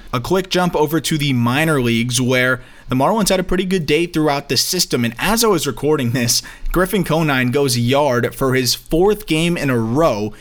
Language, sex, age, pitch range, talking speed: English, male, 20-39, 120-155 Hz, 210 wpm